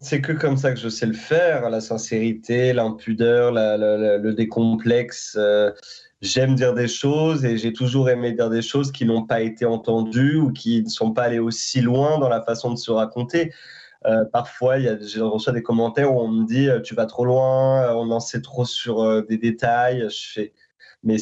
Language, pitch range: French, 110-130 Hz